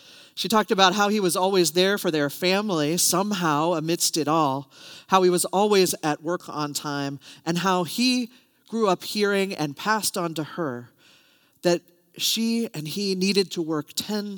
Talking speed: 175 wpm